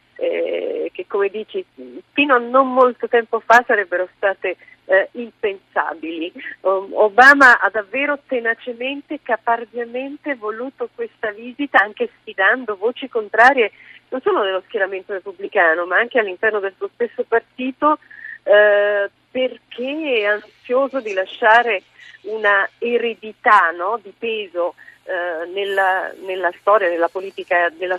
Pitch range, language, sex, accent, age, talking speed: 200-260 Hz, Italian, female, native, 40-59, 110 wpm